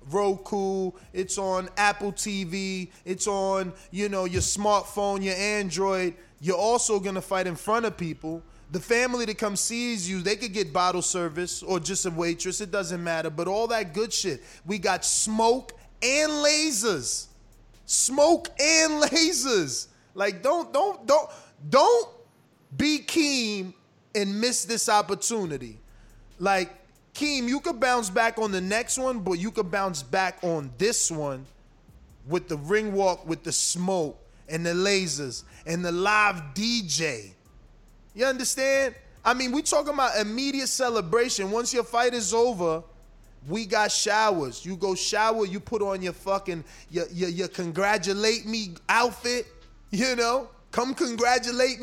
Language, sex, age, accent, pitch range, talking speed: English, male, 20-39, American, 185-235 Hz, 150 wpm